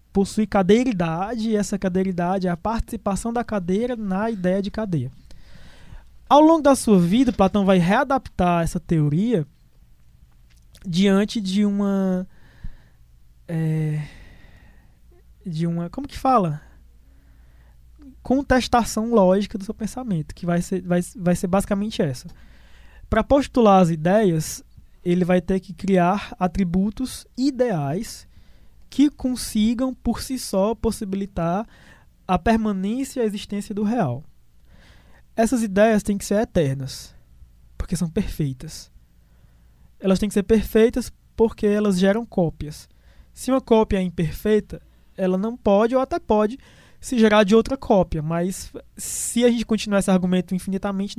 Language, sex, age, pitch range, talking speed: Portuguese, male, 20-39, 165-220 Hz, 130 wpm